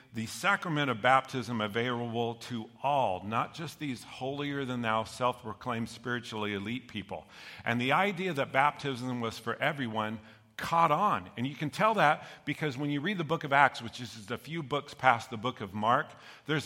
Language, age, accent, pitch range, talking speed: English, 50-69, American, 120-155 Hz, 175 wpm